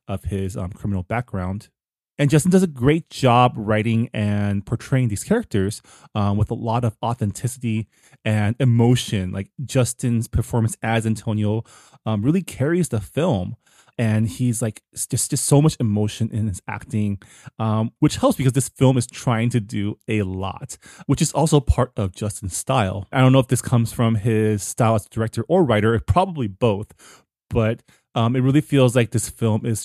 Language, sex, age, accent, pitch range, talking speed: English, male, 20-39, American, 105-130 Hz, 175 wpm